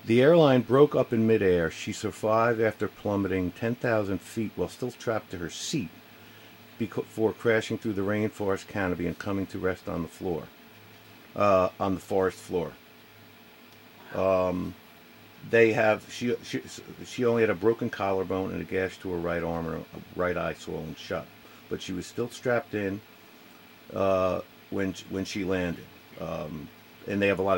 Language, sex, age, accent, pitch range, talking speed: English, male, 50-69, American, 95-115 Hz, 170 wpm